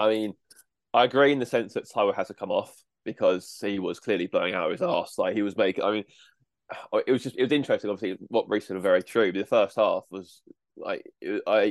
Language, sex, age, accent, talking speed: English, male, 20-39, British, 230 wpm